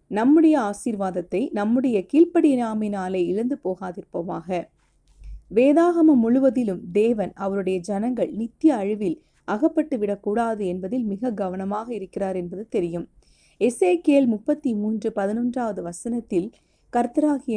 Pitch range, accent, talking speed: 190-250 Hz, native, 100 wpm